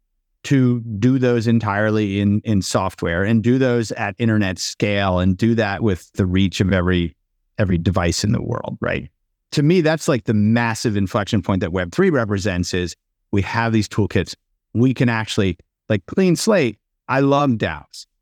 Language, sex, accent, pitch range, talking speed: English, male, American, 95-120 Hz, 170 wpm